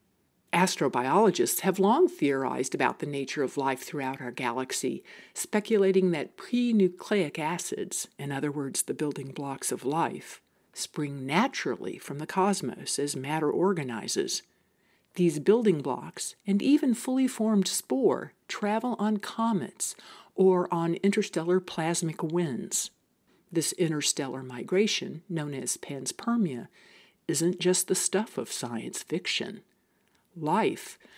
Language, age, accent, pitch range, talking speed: English, 60-79, American, 150-210 Hz, 120 wpm